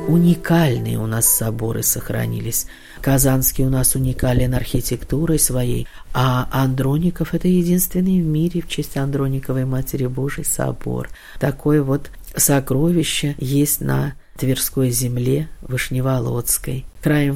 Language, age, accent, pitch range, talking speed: Russian, 50-69, native, 130-150 Hz, 110 wpm